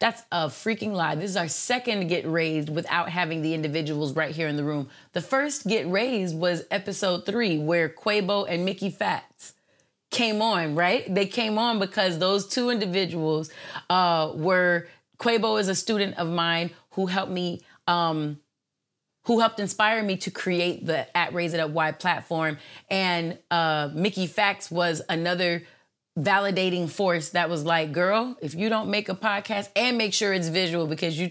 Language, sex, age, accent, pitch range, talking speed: English, female, 30-49, American, 165-205 Hz, 175 wpm